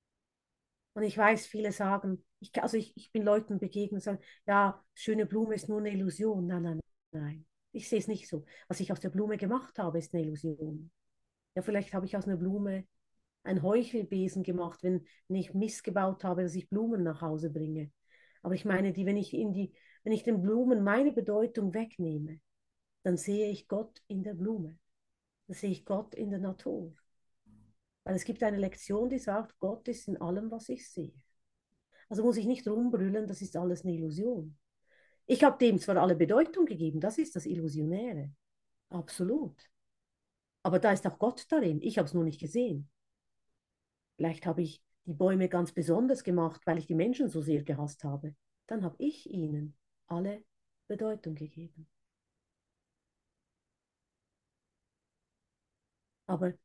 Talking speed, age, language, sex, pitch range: 170 wpm, 40-59, German, female, 165-215 Hz